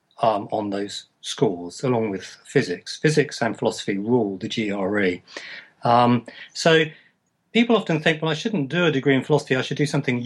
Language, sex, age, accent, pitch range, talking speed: English, male, 40-59, British, 110-140 Hz, 175 wpm